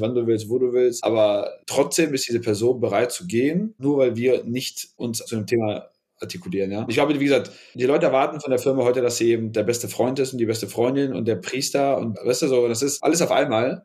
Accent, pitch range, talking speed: German, 115-145 Hz, 255 wpm